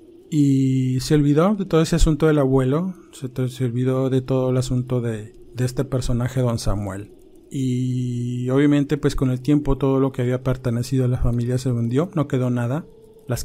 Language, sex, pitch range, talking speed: Spanish, male, 120-145 Hz, 190 wpm